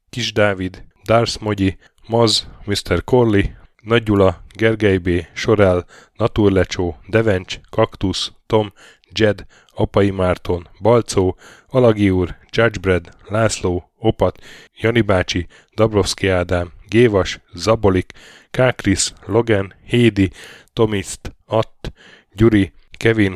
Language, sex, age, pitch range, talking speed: Hungarian, male, 10-29, 95-110 Hz, 90 wpm